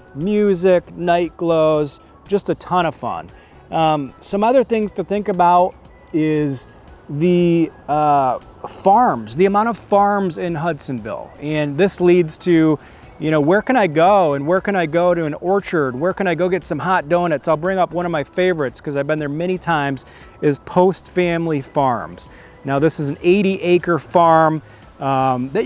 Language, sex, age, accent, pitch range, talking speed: English, male, 30-49, American, 150-190 Hz, 180 wpm